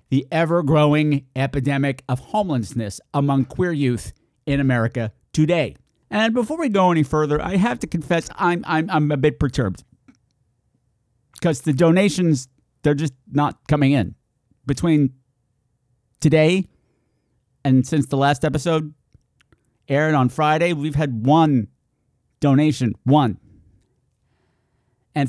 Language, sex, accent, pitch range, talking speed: English, male, American, 130-175 Hz, 120 wpm